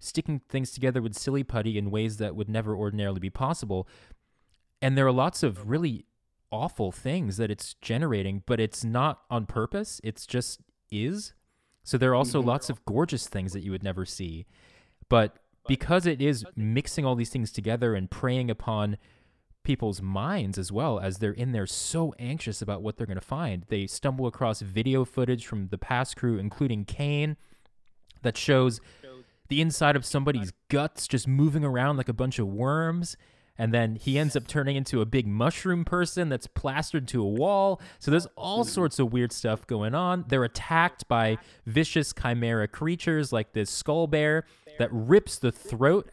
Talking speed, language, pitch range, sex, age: 180 wpm, English, 110-145 Hz, male, 20-39